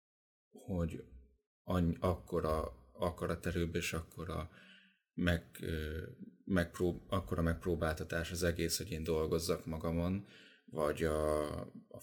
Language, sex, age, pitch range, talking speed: Hungarian, male, 30-49, 80-90 Hz, 95 wpm